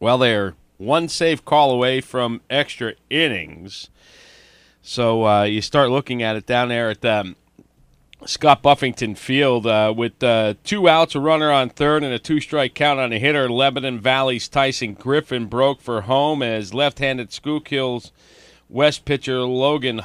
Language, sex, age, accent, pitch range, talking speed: English, male, 40-59, American, 110-135 Hz, 155 wpm